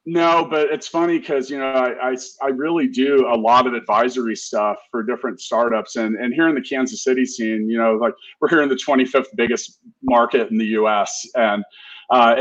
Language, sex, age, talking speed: English, male, 40-59, 205 wpm